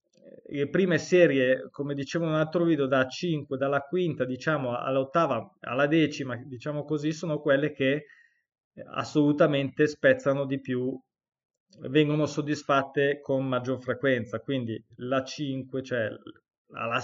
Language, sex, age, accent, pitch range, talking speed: Italian, male, 20-39, native, 130-160 Hz, 125 wpm